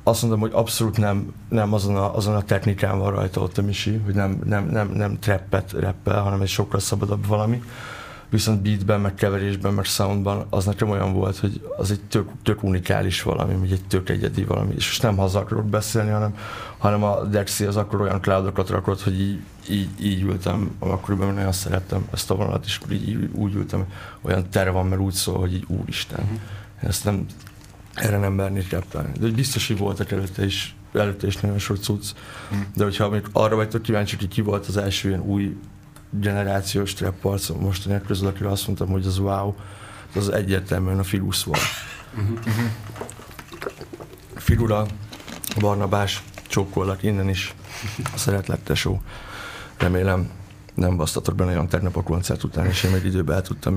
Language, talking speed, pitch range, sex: Hungarian, 170 wpm, 95-105 Hz, male